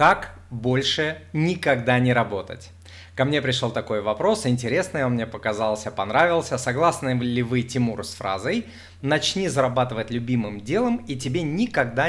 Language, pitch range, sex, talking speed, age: Russian, 105-130 Hz, male, 140 wpm, 20-39